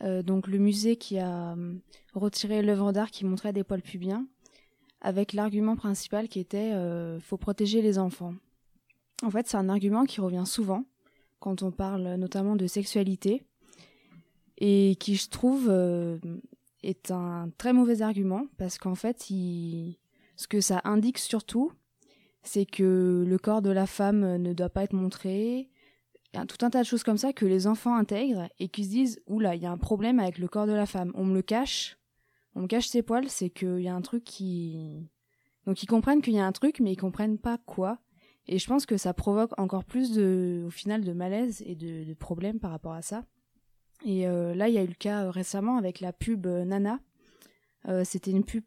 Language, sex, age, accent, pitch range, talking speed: French, female, 20-39, French, 180-215 Hz, 210 wpm